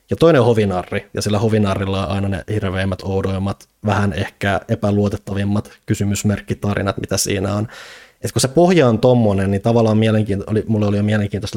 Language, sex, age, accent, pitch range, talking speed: Finnish, male, 20-39, native, 95-110 Hz, 170 wpm